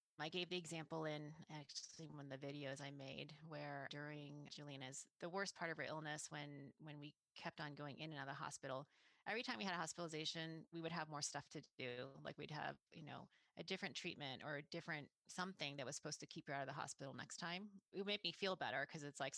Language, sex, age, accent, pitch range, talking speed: English, female, 30-49, American, 140-170 Hz, 240 wpm